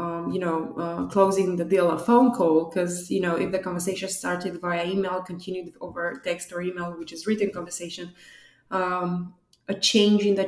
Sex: female